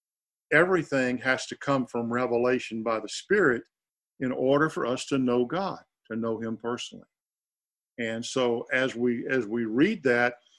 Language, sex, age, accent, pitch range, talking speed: English, male, 50-69, American, 120-140 Hz, 160 wpm